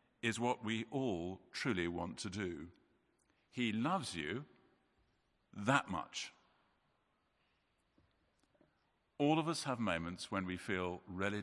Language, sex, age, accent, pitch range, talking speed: English, male, 50-69, British, 85-120 Hz, 115 wpm